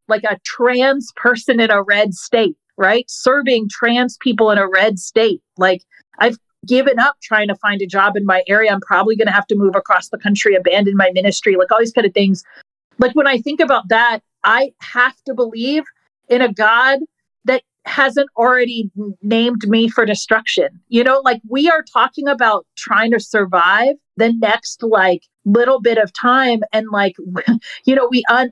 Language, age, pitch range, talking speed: English, 40-59, 215-270 Hz, 190 wpm